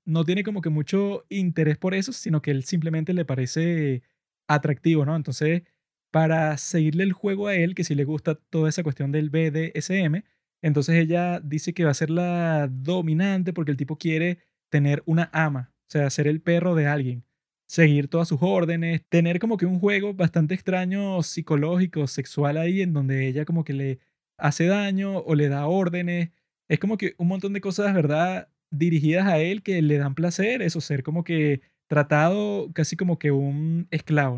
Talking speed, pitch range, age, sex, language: 185 wpm, 150-180 Hz, 20-39, male, Spanish